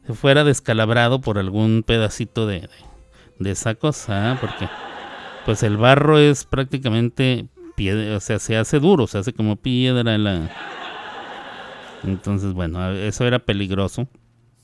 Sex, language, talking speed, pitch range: male, Spanish, 140 wpm, 105-150 Hz